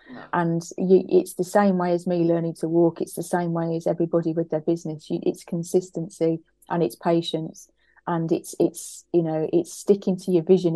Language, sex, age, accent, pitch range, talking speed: English, female, 30-49, British, 165-180 Hz, 200 wpm